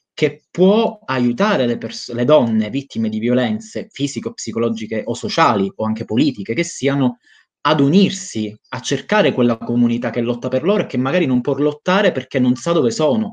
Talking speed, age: 180 wpm, 20-39